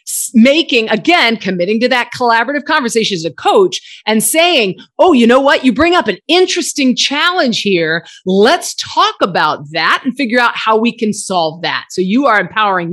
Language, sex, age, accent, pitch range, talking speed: English, female, 40-59, American, 200-290 Hz, 180 wpm